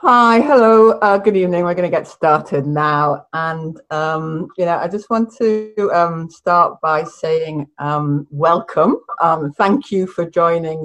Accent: British